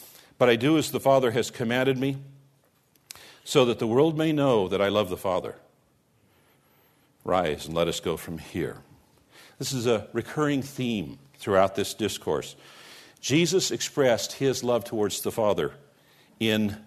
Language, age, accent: English, 50-69, American